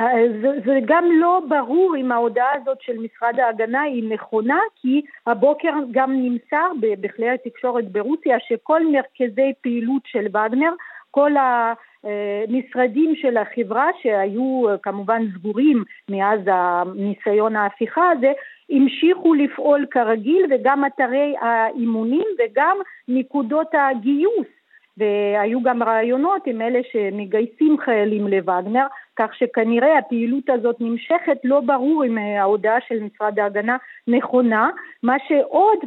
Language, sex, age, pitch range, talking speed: Hebrew, female, 50-69, 225-285 Hz, 110 wpm